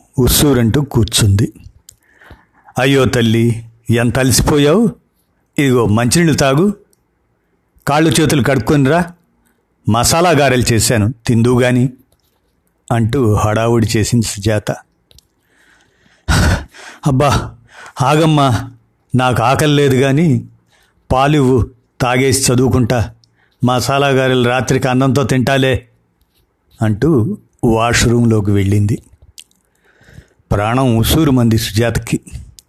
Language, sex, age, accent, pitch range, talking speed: Telugu, male, 50-69, native, 110-135 Hz, 75 wpm